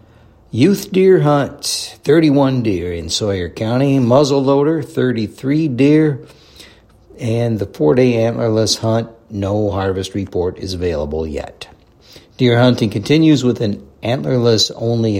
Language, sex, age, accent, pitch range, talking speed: English, male, 60-79, American, 95-130 Hz, 115 wpm